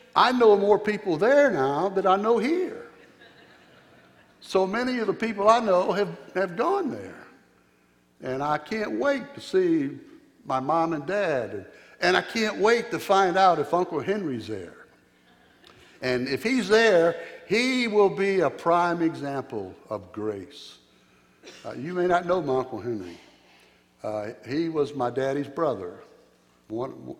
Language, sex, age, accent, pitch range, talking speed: English, male, 60-79, American, 125-200 Hz, 150 wpm